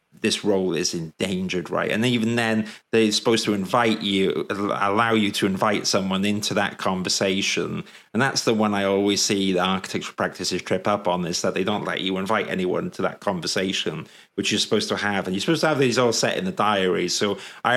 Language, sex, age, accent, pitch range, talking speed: English, male, 30-49, British, 100-120 Hz, 215 wpm